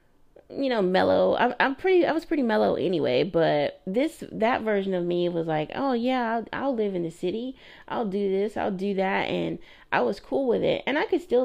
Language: English